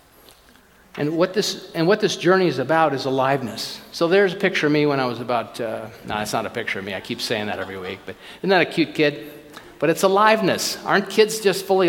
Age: 50-69